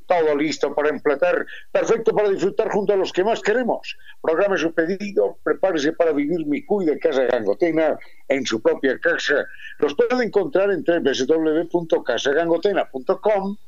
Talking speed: 140 wpm